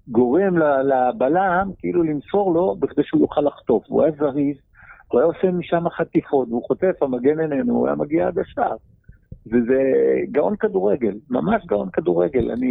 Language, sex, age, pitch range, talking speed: Hebrew, male, 50-69, 125-170 Hz, 155 wpm